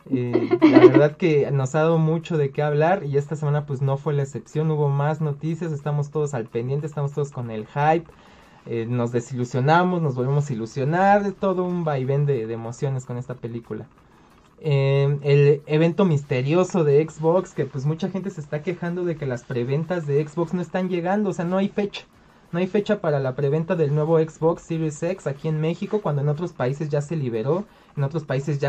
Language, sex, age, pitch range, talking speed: Spanish, male, 30-49, 140-175 Hz, 205 wpm